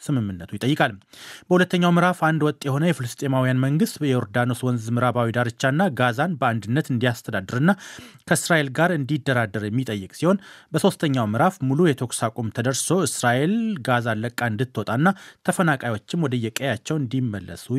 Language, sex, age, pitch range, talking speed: Amharic, male, 30-49, 125-165 Hz, 110 wpm